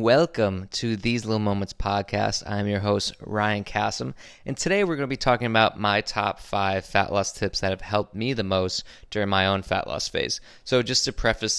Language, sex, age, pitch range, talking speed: English, male, 20-39, 100-120 Hz, 210 wpm